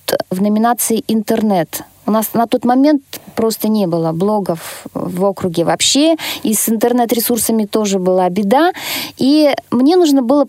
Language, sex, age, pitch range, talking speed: Russian, female, 20-39, 195-255 Hz, 155 wpm